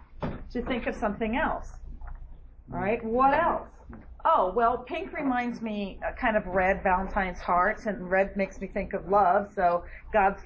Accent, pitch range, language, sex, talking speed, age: American, 205-255 Hz, English, female, 160 wpm, 40-59